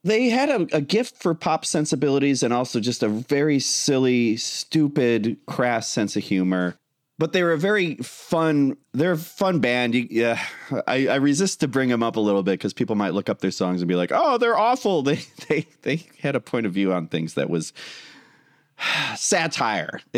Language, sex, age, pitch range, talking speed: English, male, 30-49, 105-150 Hz, 190 wpm